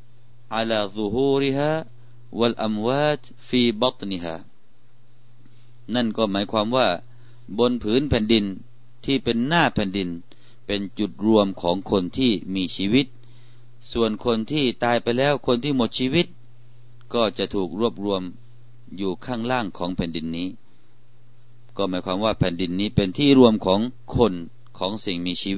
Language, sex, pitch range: Thai, male, 100-120 Hz